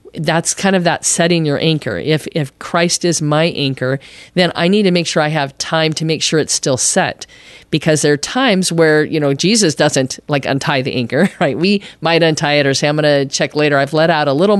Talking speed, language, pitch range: 240 wpm, English, 150-180 Hz